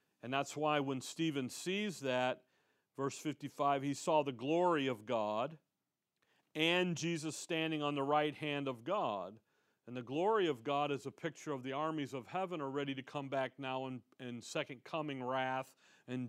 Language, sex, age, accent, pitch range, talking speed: English, male, 40-59, American, 135-170 Hz, 180 wpm